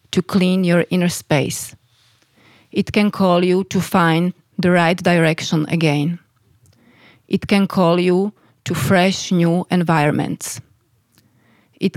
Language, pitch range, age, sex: Slovak, 125-185 Hz, 30-49, female